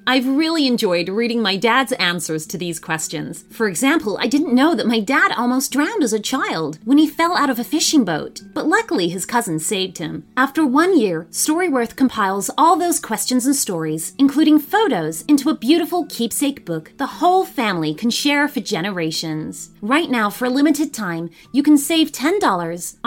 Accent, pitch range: American, 185-295 Hz